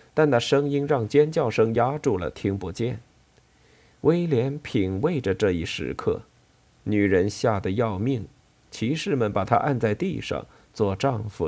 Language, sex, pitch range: Chinese, male, 105-140 Hz